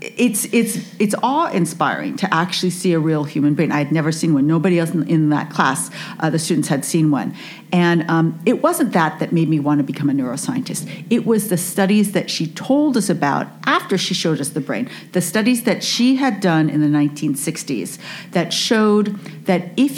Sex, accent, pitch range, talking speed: female, American, 160-230 Hz, 205 wpm